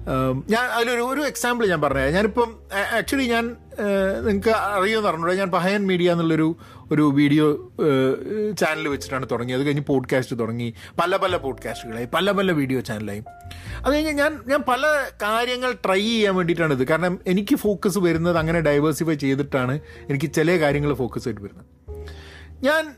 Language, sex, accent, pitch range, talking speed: Malayalam, male, native, 130-220 Hz, 145 wpm